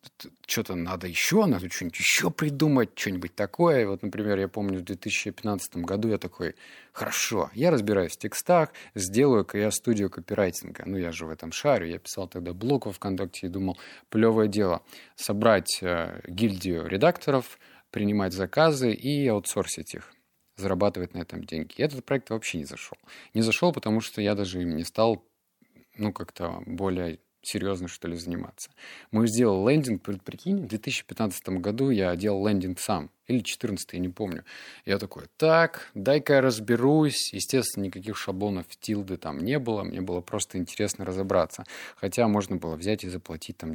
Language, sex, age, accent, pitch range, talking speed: Russian, male, 30-49, native, 90-115 Hz, 160 wpm